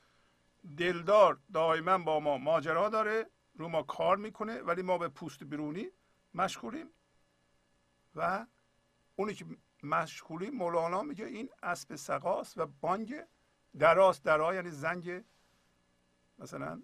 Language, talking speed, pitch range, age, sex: Persian, 115 wpm, 135-190 Hz, 50-69, male